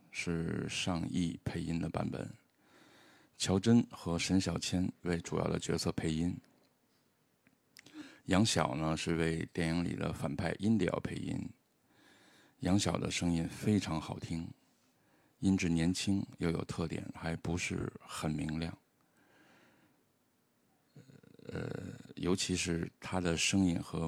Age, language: 50-69, Chinese